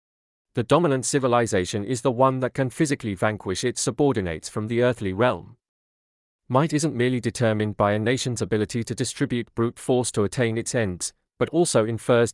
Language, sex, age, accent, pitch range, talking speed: English, male, 40-59, British, 105-130 Hz, 170 wpm